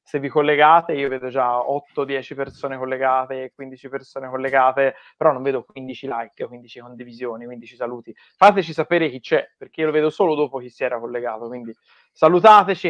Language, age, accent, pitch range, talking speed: Italian, 30-49, native, 130-170 Hz, 170 wpm